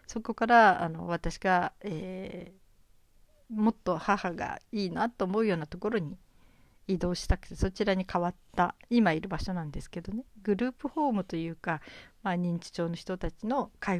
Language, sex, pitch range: Japanese, female, 170-220 Hz